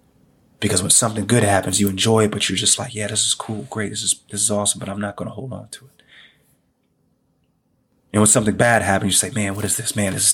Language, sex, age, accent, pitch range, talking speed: English, male, 30-49, American, 95-110 Hz, 260 wpm